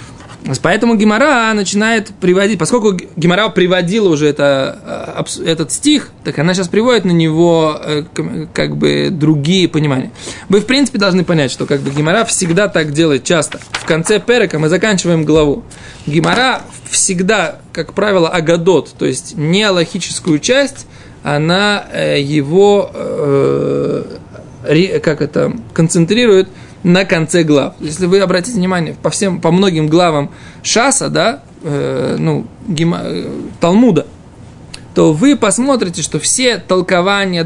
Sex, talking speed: male, 125 wpm